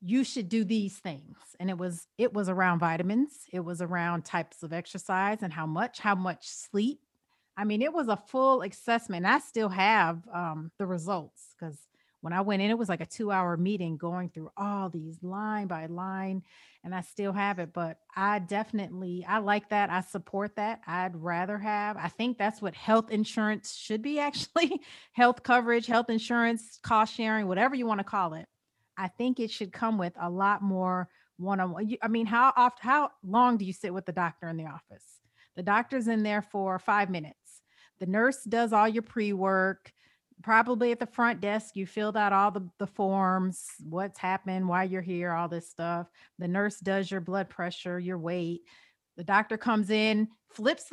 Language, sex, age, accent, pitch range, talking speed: English, female, 30-49, American, 180-225 Hz, 195 wpm